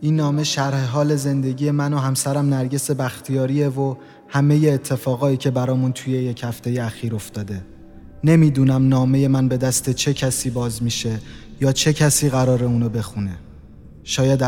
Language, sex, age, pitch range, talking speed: Persian, male, 30-49, 120-145 Hz, 150 wpm